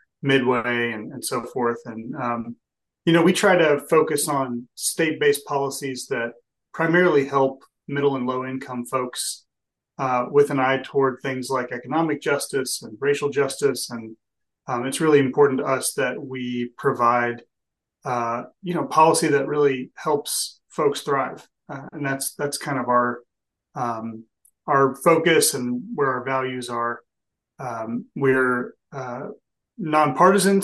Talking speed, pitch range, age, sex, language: 145 wpm, 120-145 Hz, 30-49, male, English